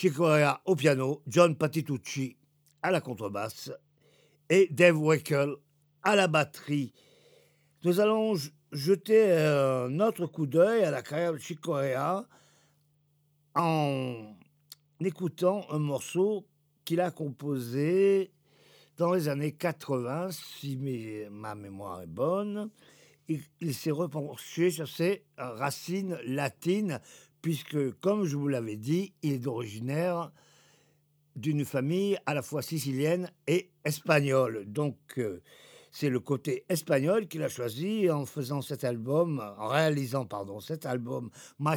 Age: 50-69